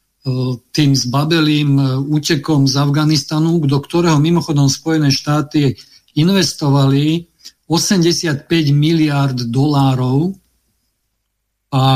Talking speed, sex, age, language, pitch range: 75 wpm, male, 50-69, Slovak, 130-155 Hz